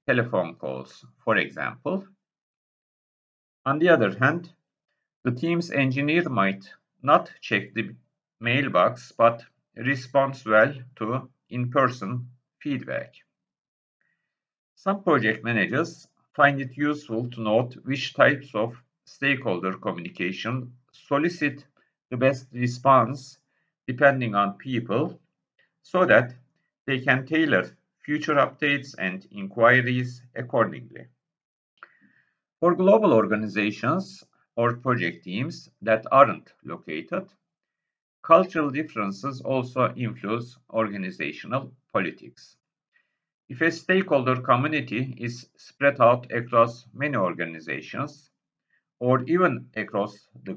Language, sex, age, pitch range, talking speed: Turkish, male, 50-69, 115-140 Hz, 95 wpm